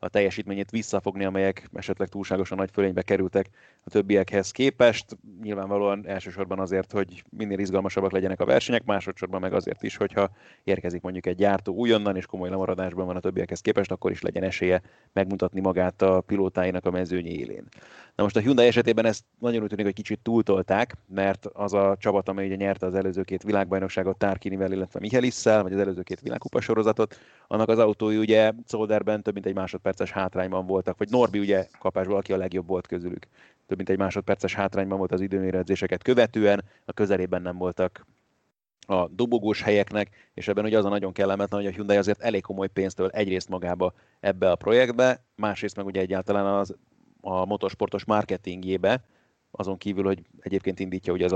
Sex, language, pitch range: male, Hungarian, 95-105 Hz